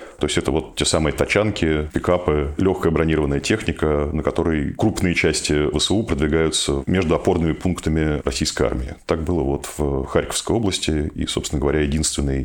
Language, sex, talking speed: Russian, male, 155 wpm